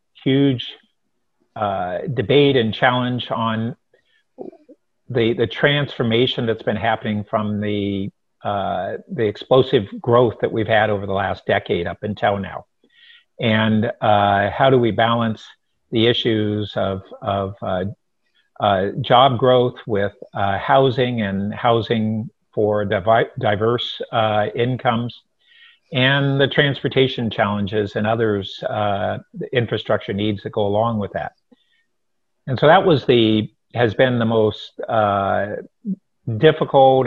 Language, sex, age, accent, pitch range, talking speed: English, male, 50-69, American, 105-130 Hz, 125 wpm